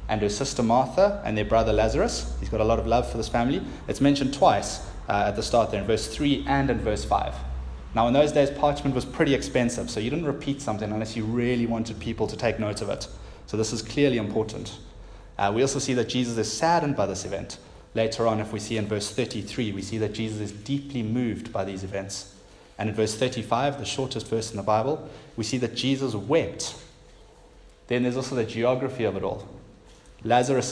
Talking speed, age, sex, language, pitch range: 220 wpm, 20-39, male, English, 105-125 Hz